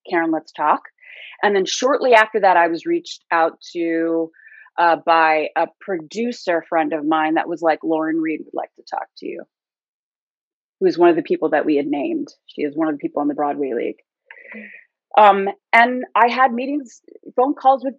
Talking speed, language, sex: 195 wpm, English, female